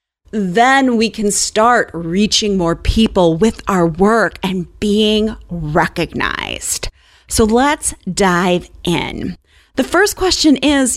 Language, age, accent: English, 30-49, American